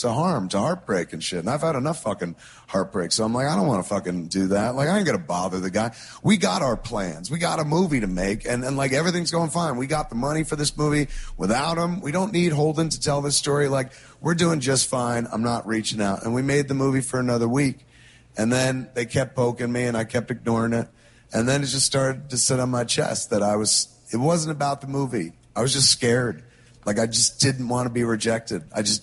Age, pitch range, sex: 40-59, 115-150 Hz, male